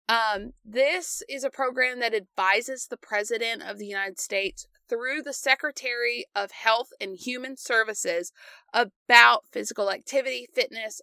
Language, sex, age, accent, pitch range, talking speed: English, female, 30-49, American, 200-265 Hz, 135 wpm